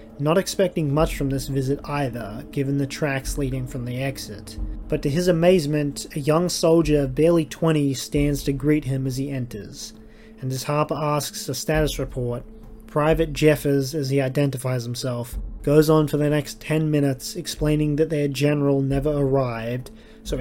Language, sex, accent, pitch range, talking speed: English, male, Australian, 125-150 Hz, 170 wpm